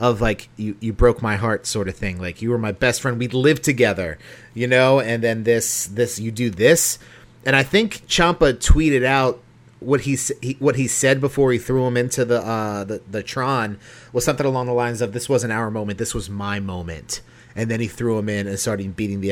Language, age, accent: English, 30-49, American